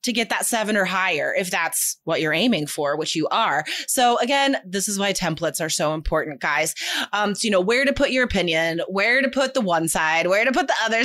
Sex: female